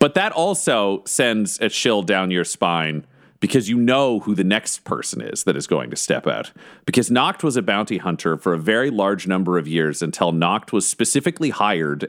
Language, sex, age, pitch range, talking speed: English, male, 40-59, 90-120 Hz, 205 wpm